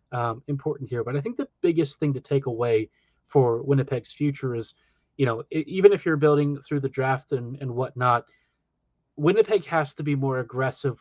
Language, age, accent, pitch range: English, 30-49, American, 130-155 Hz